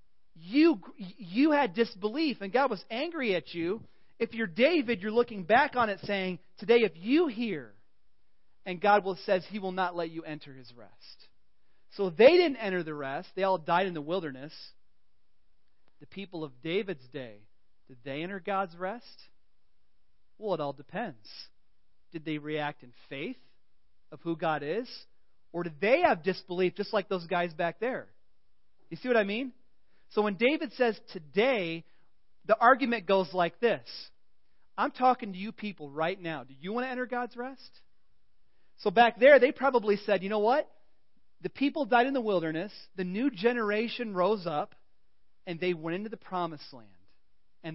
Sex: male